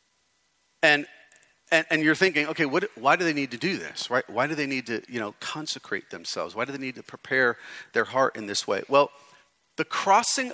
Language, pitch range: English, 145-210 Hz